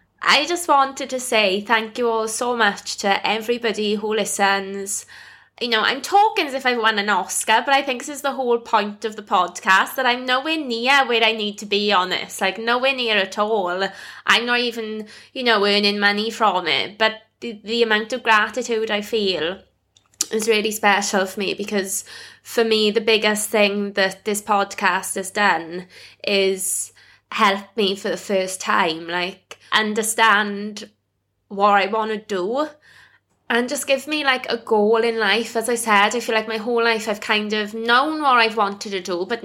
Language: English